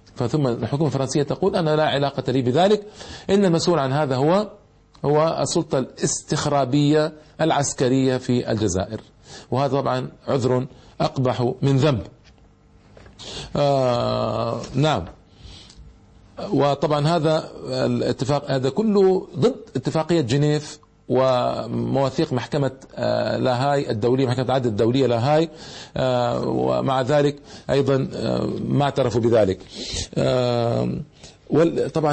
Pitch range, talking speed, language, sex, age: 125-160 Hz, 95 wpm, Arabic, male, 50-69